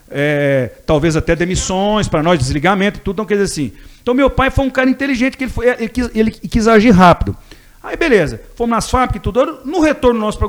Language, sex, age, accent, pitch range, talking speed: Portuguese, male, 50-69, Brazilian, 150-215 Hz, 225 wpm